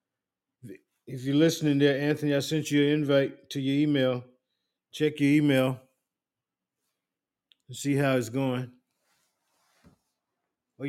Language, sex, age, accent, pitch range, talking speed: English, male, 50-69, American, 130-150 Hz, 120 wpm